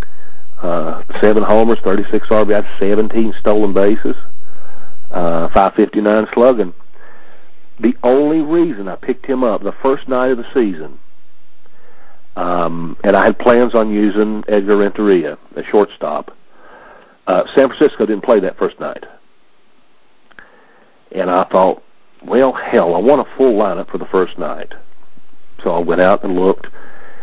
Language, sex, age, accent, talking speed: English, male, 50-69, American, 135 wpm